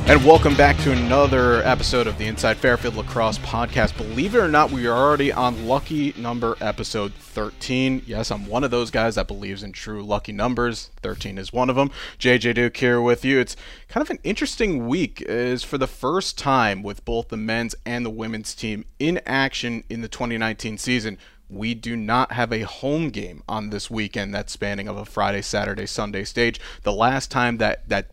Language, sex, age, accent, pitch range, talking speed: English, male, 30-49, American, 110-125 Hz, 200 wpm